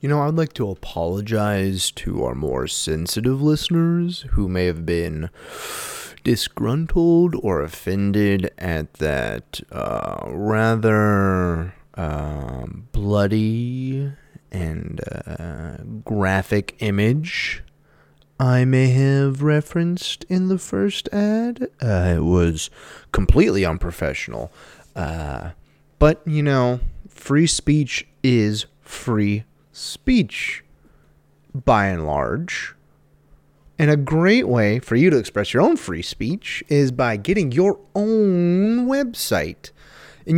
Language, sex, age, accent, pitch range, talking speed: English, male, 30-49, American, 100-155 Hz, 105 wpm